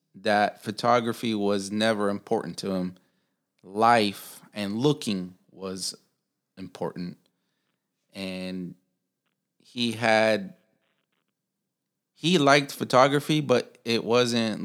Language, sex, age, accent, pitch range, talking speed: English, male, 30-49, American, 95-115 Hz, 85 wpm